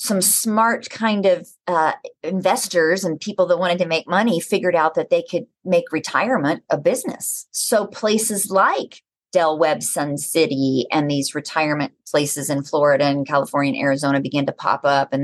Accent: American